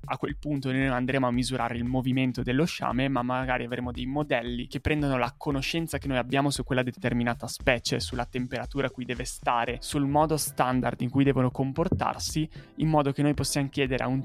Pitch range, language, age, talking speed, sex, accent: 125-135 Hz, Italian, 20-39, 205 wpm, male, native